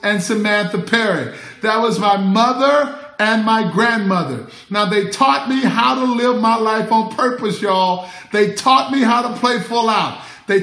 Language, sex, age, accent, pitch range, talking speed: English, male, 50-69, American, 215-260 Hz, 175 wpm